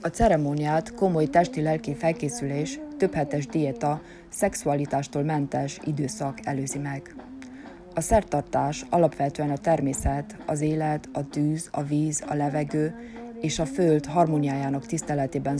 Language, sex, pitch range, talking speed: Hungarian, female, 145-170 Hz, 115 wpm